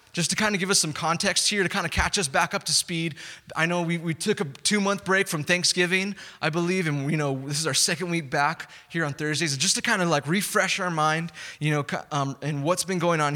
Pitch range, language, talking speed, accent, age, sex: 145-180 Hz, English, 260 wpm, American, 20-39, male